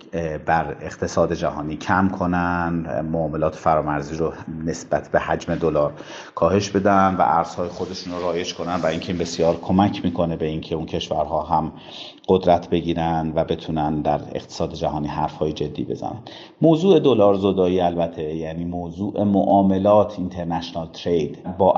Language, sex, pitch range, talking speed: Persian, male, 85-100 Hz, 140 wpm